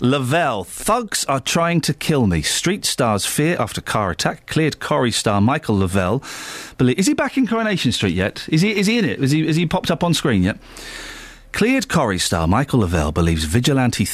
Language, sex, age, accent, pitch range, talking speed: English, male, 40-59, British, 120-185 Hz, 210 wpm